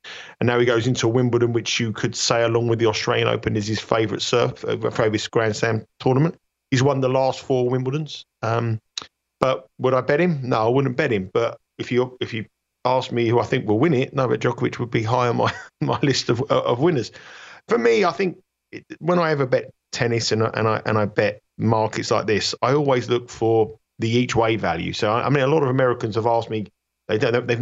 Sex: male